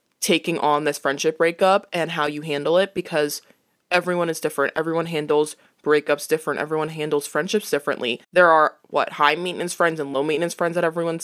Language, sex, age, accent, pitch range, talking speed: English, female, 20-39, American, 150-185 Hz, 180 wpm